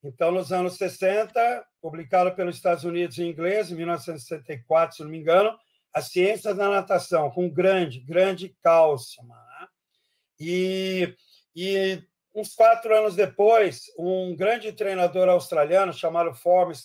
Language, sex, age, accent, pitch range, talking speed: Portuguese, male, 60-79, Brazilian, 165-200 Hz, 135 wpm